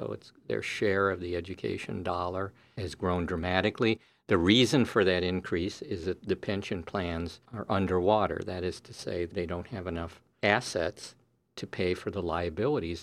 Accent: American